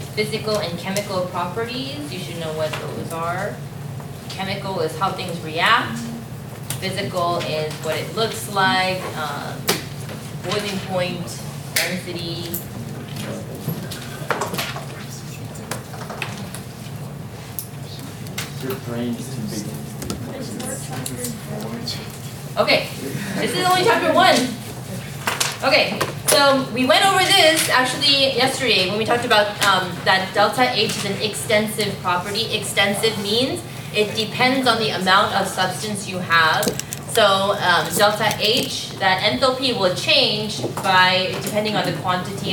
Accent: American